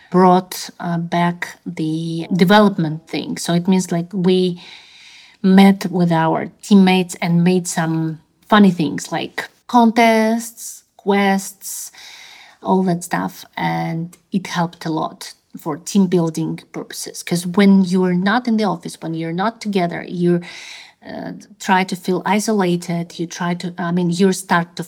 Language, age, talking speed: English, 30-49, 145 wpm